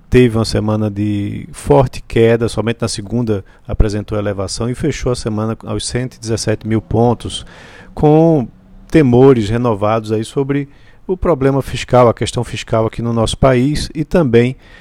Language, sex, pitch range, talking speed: Portuguese, male, 105-130 Hz, 140 wpm